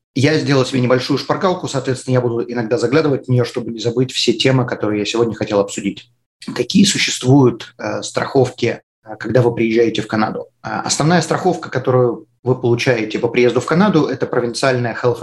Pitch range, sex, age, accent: 115-145 Hz, male, 30-49, native